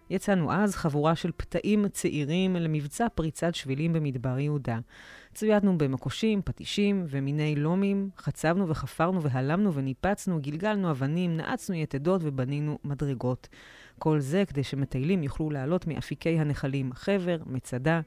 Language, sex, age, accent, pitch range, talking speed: Hebrew, female, 30-49, native, 135-185 Hz, 120 wpm